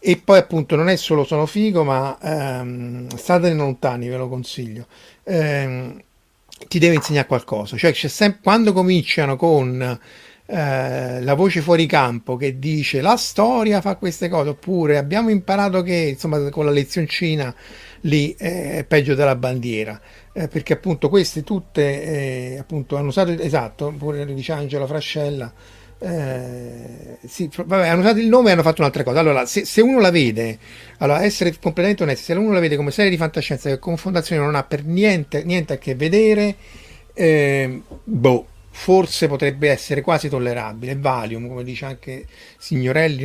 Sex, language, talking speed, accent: male, Italian, 165 wpm, native